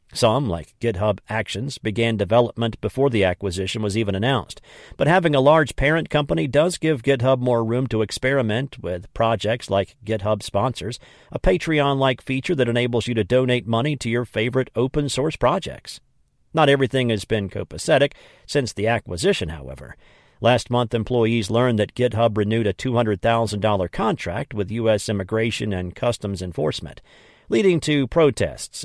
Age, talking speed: 50-69, 150 wpm